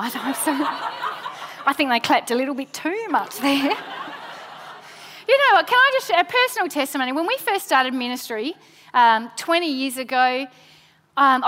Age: 30-49